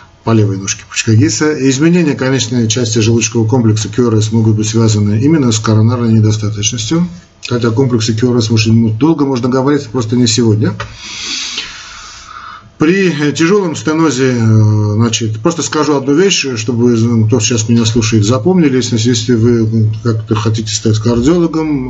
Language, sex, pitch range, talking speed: Russian, male, 110-135 Hz, 130 wpm